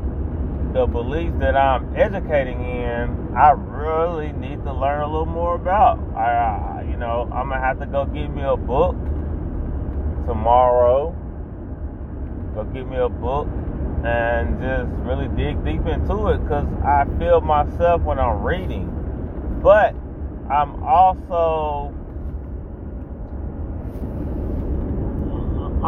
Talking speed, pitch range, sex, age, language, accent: 120 wpm, 75-105 Hz, male, 30-49, English, American